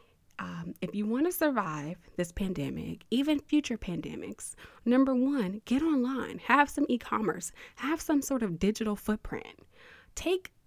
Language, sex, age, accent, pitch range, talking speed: English, female, 20-39, American, 200-290 Hz, 140 wpm